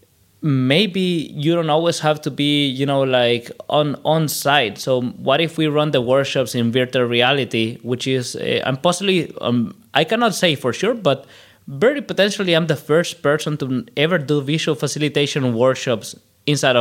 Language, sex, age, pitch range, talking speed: English, male, 20-39, 120-145 Hz, 170 wpm